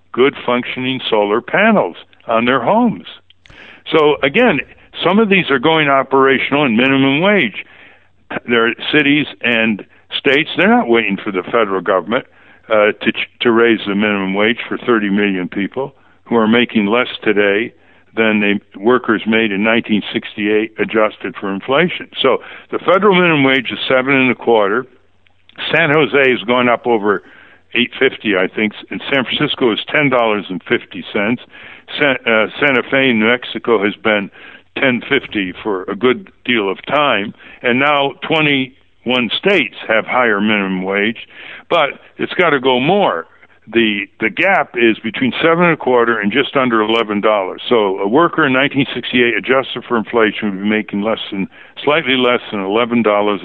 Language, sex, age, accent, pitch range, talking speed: English, male, 60-79, American, 105-135 Hz, 160 wpm